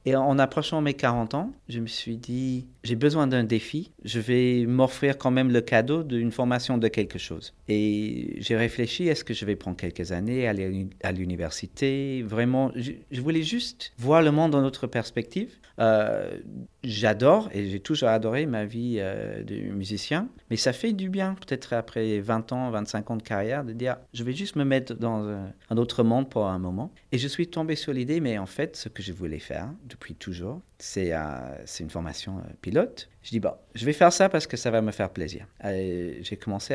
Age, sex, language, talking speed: 50-69, male, French, 210 wpm